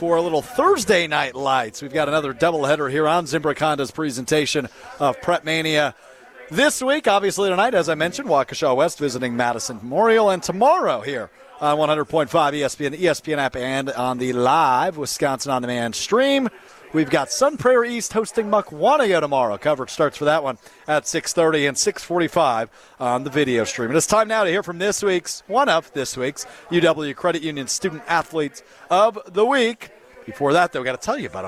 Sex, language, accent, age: male, English, American, 40-59